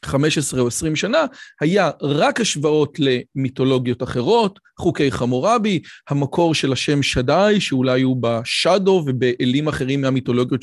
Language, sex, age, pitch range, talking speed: Hebrew, male, 40-59, 130-185 Hz, 120 wpm